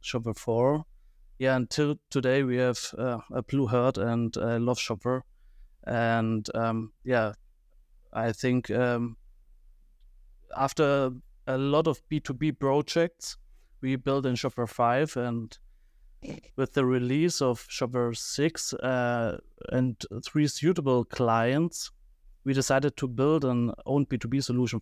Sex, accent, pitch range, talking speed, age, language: male, German, 115-140 Hz, 125 wpm, 30-49, English